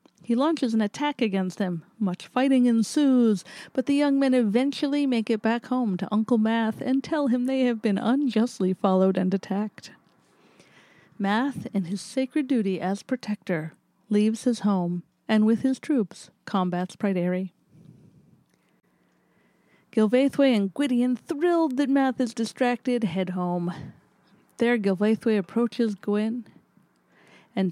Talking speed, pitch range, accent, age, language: 135 wpm, 190-245 Hz, American, 40-59, English